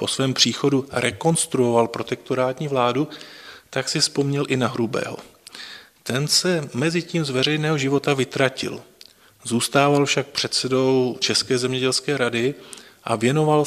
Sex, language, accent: male, Czech, native